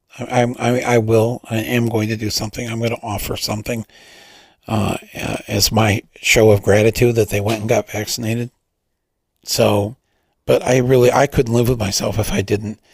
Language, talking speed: English, 180 wpm